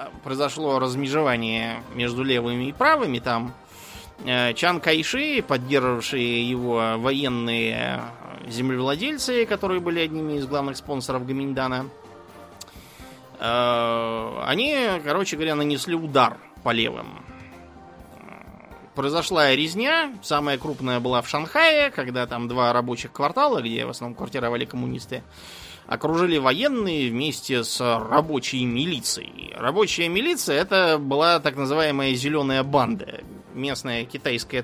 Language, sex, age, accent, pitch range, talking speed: Russian, male, 20-39, native, 120-150 Hz, 105 wpm